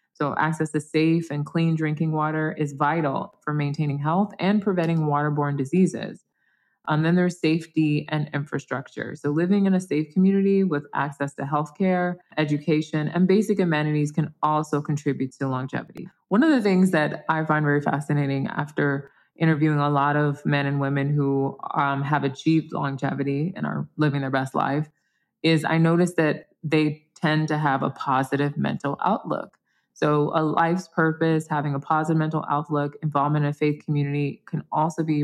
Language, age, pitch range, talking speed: English, 20-39, 145-165 Hz, 170 wpm